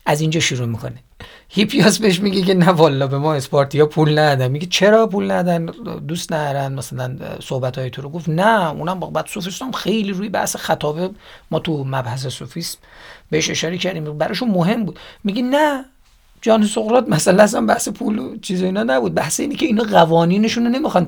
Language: Persian